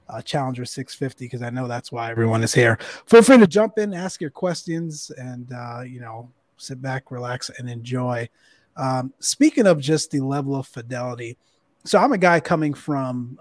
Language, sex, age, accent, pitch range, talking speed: English, male, 30-49, American, 125-145 Hz, 190 wpm